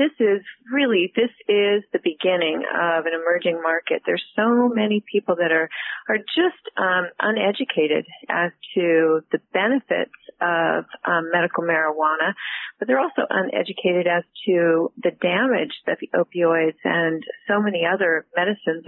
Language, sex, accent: English, female, American